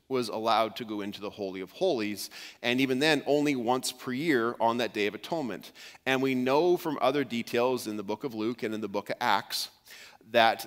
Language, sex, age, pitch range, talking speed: English, male, 40-59, 105-130 Hz, 220 wpm